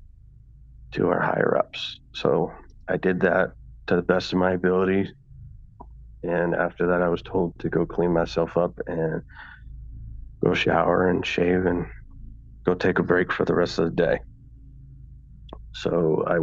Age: 30-49